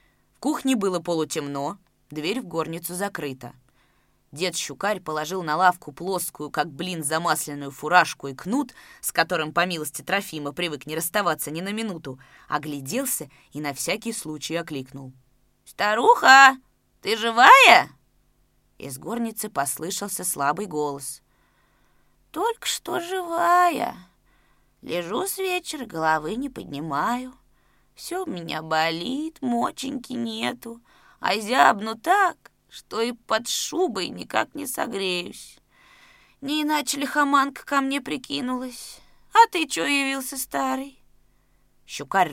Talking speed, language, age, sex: 115 wpm, Russian, 20-39, female